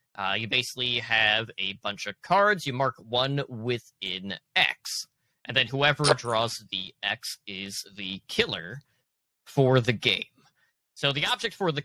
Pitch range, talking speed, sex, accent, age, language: 115-150 Hz, 155 wpm, male, American, 30-49, English